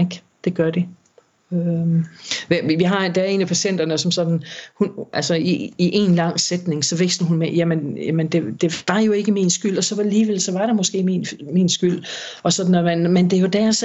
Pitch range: 165-195 Hz